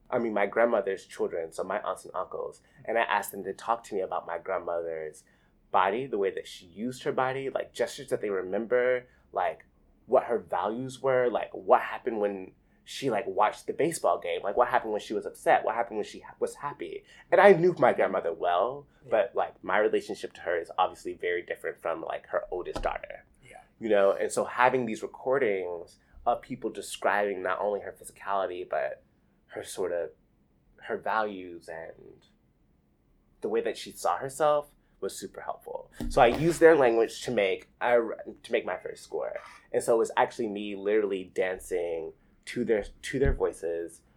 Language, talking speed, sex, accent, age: English, 190 wpm, male, American, 20-39